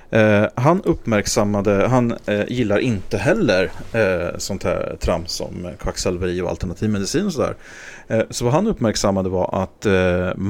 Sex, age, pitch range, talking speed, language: male, 30-49, 95-125 Hz, 155 wpm, English